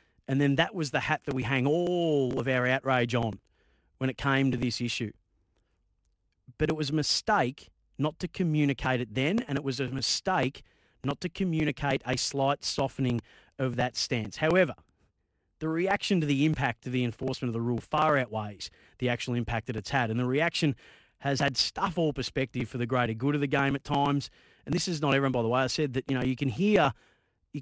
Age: 30-49